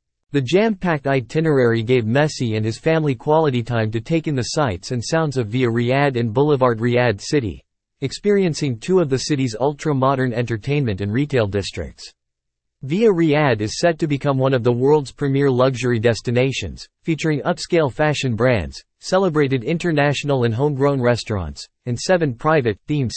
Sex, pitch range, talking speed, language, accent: male, 120-150 Hz, 155 wpm, English, American